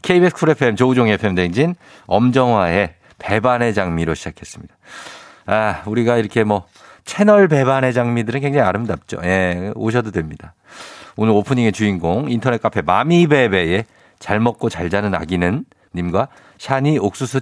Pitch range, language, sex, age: 100-140 Hz, Korean, male, 50-69